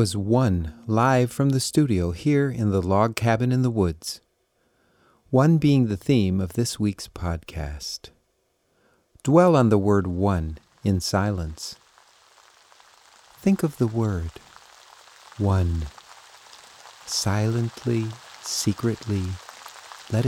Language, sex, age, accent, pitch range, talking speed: English, male, 50-69, American, 95-155 Hz, 110 wpm